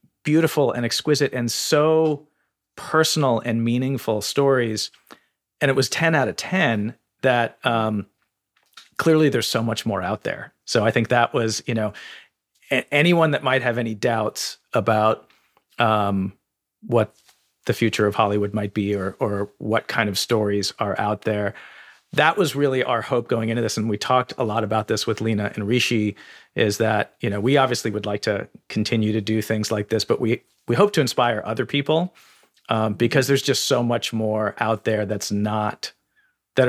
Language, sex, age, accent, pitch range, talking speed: English, male, 40-59, American, 105-130 Hz, 180 wpm